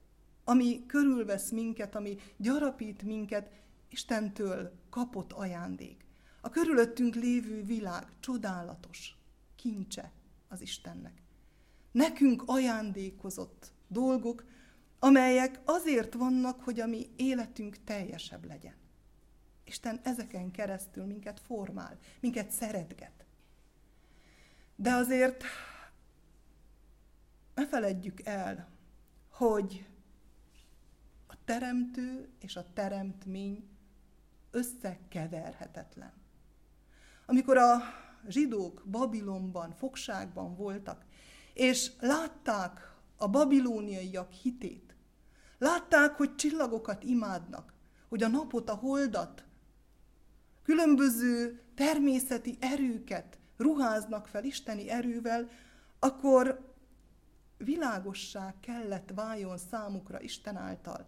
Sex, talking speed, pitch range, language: female, 80 wpm, 200-255 Hz, Hungarian